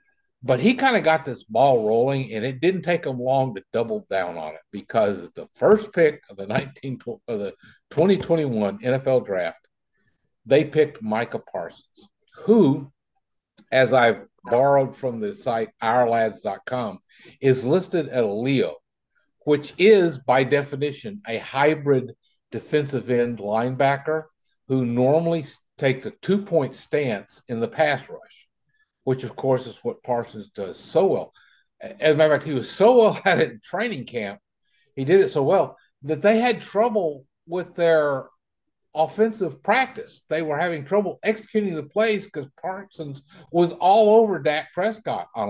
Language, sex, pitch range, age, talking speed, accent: English, male, 130-195 Hz, 50-69, 155 wpm, American